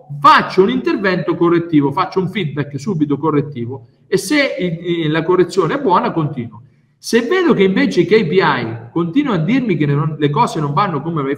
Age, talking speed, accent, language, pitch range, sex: 50-69, 170 wpm, native, Italian, 145-205 Hz, male